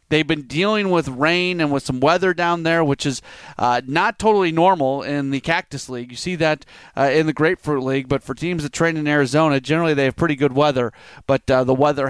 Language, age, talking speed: English, 30-49, 230 wpm